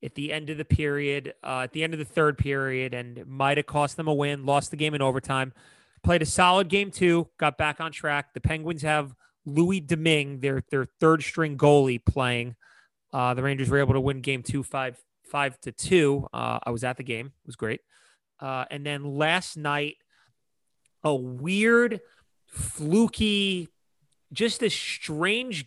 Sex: male